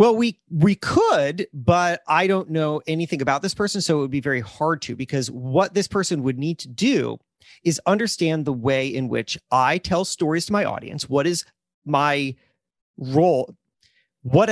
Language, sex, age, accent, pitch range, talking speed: English, male, 30-49, American, 135-195 Hz, 180 wpm